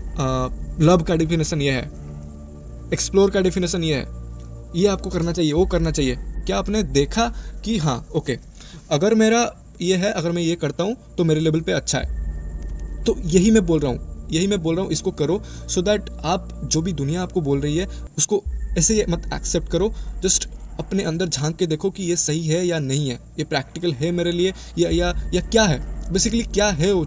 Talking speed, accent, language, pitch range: 210 wpm, native, Hindi, 140-185 Hz